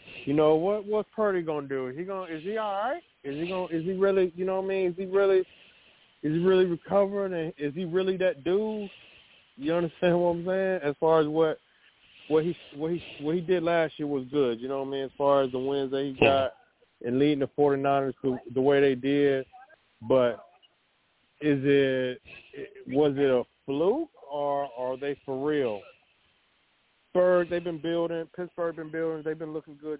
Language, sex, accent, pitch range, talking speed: English, male, American, 140-180 Hz, 210 wpm